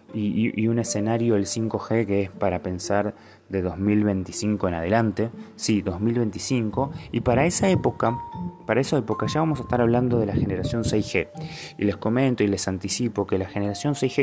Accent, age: Argentinian, 20-39